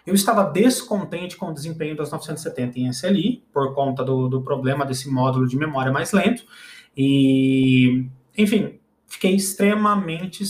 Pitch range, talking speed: 145-195 Hz, 145 wpm